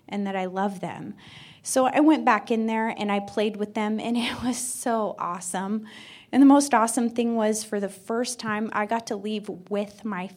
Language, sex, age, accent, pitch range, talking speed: English, female, 20-39, American, 190-225 Hz, 215 wpm